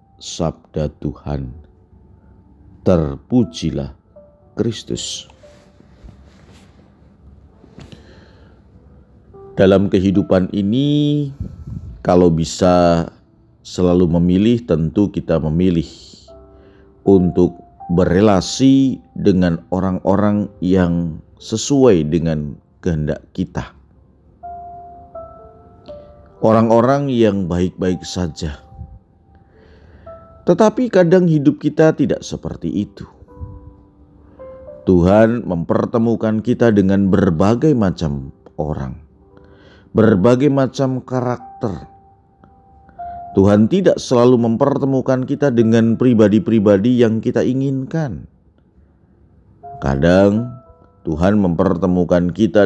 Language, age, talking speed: Indonesian, 50-69, 65 wpm